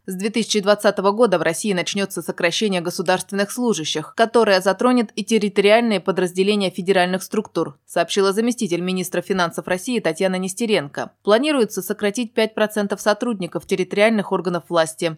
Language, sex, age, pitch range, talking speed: Russian, female, 20-39, 185-220 Hz, 120 wpm